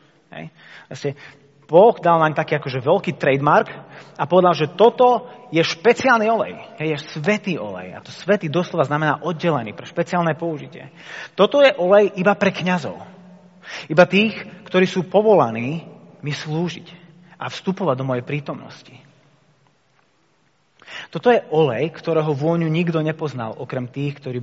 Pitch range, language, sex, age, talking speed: 145-190 Hz, Slovak, male, 30-49, 135 wpm